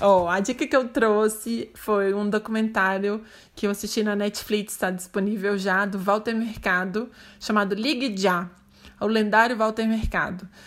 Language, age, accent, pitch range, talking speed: Portuguese, 20-39, Brazilian, 195-230 Hz, 150 wpm